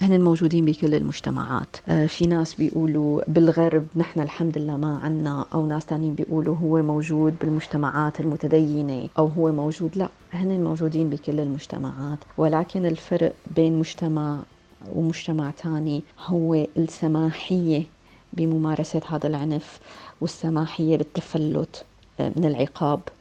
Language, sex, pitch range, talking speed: Arabic, female, 155-170 Hz, 115 wpm